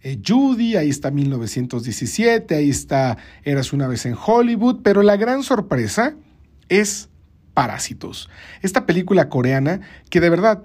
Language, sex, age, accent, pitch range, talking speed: Spanish, male, 50-69, Mexican, 130-185 Hz, 135 wpm